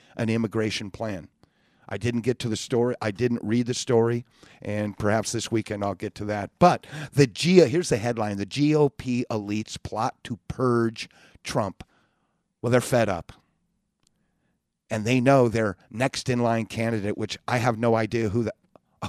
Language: English